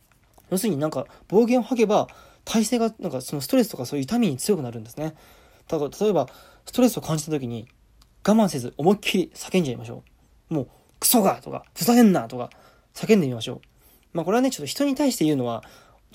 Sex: male